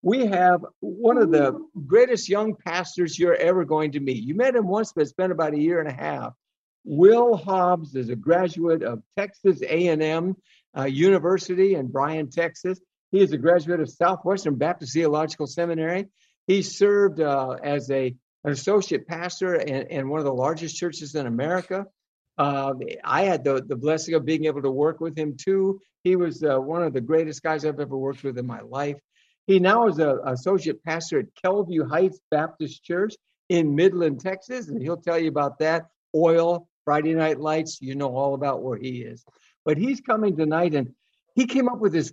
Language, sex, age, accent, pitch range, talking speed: English, male, 60-79, American, 150-190 Hz, 190 wpm